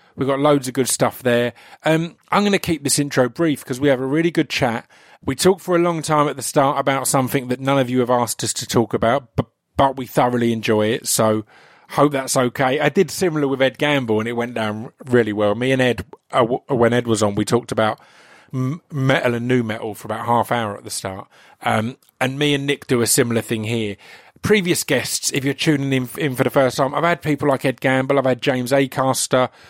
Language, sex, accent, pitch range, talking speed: English, male, British, 115-145 Hz, 245 wpm